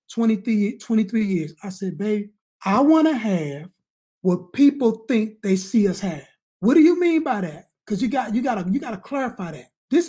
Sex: male